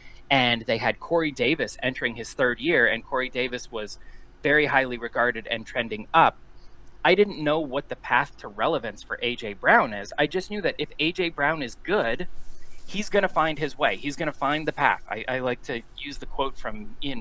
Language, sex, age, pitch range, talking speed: English, male, 30-49, 125-170 Hz, 215 wpm